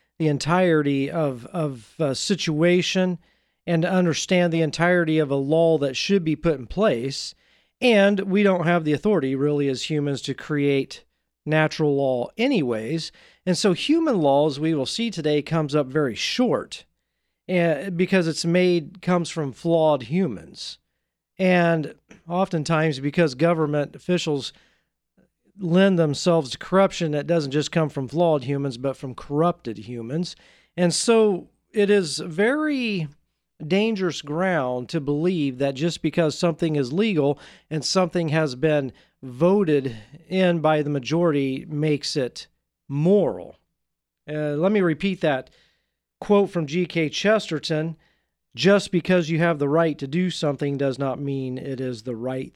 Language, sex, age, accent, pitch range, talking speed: English, male, 40-59, American, 145-180 Hz, 145 wpm